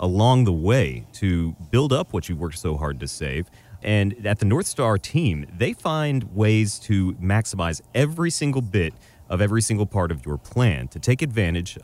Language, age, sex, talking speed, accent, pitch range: English, 30-49, male, 190 wpm, American, 90-125 Hz